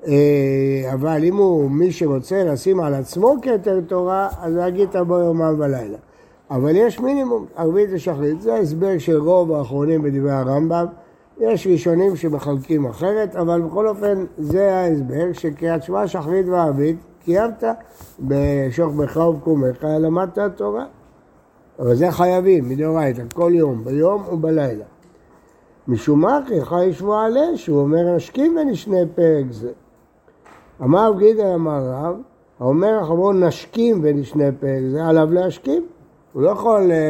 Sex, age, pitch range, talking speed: male, 60-79, 145-195 Hz, 130 wpm